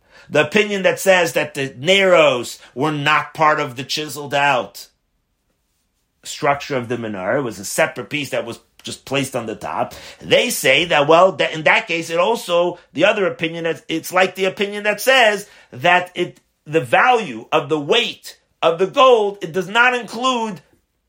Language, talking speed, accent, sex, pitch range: English, 175 wpm, American, male, 125-185 Hz